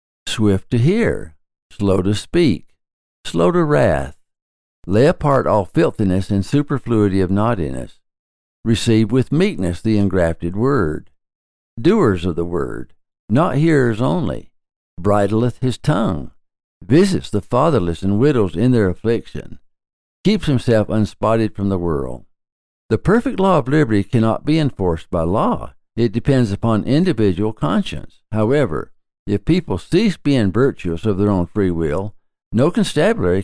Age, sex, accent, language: 60-79, male, American, English